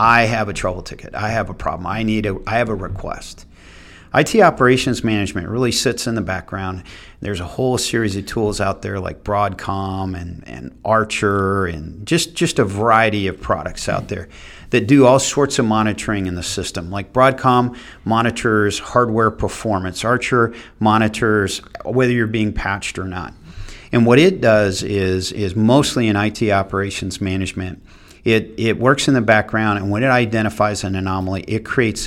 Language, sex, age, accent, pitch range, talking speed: English, male, 50-69, American, 95-115 Hz, 175 wpm